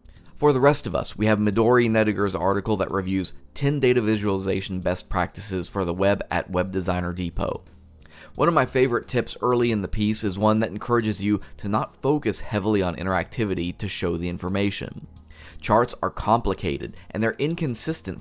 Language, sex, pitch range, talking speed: English, male, 90-115 Hz, 180 wpm